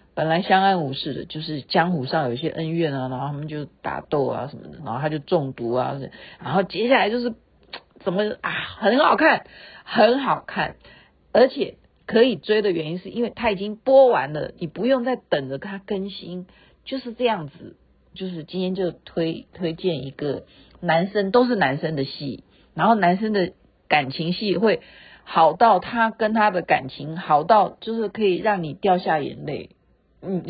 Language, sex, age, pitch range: Chinese, female, 50-69, 160-215 Hz